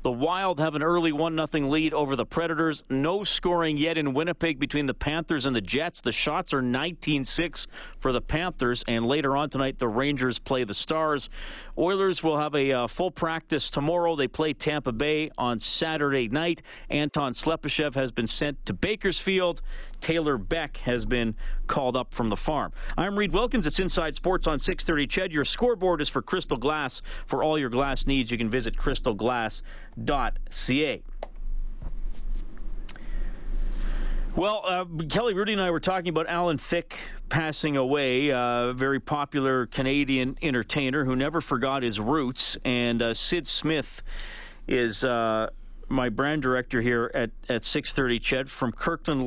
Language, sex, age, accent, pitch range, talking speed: English, male, 40-59, American, 130-165 Hz, 160 wpm